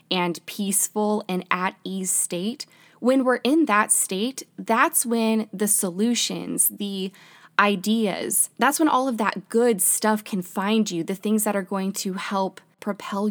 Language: English